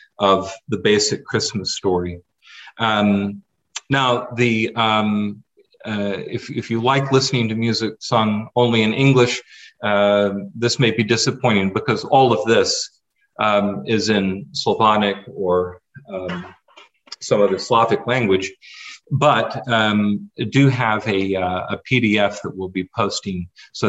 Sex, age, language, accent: male, 40-59, English, American